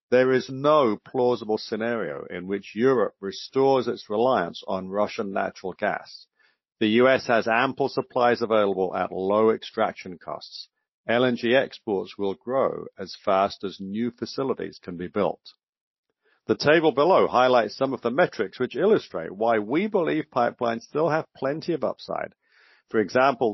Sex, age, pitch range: male, 50-69, 110-135 Hz